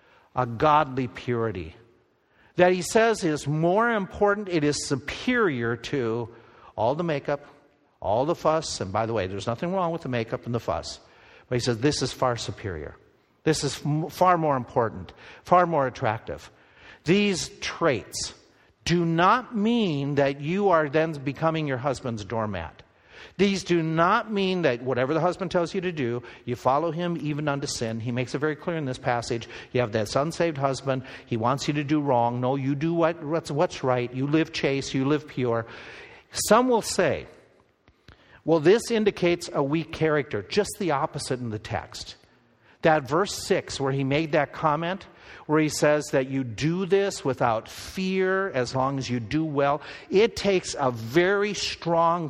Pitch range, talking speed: 125-175 Hz, 175 wpm